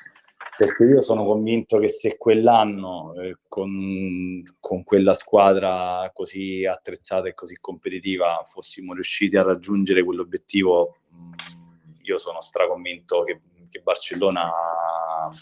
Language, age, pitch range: Italian, 30-49, 90-110 Hz